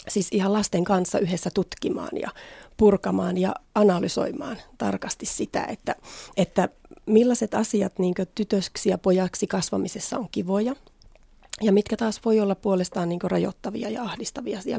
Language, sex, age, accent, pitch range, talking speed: Finnish, female, 30-49, native, 185-220 Hz, 135 wpm